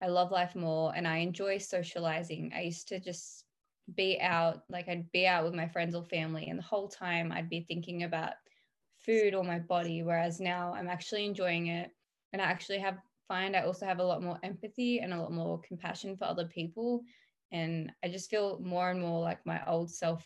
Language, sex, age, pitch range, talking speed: English, female, 10-29, 170-190 Hz, 215 wpm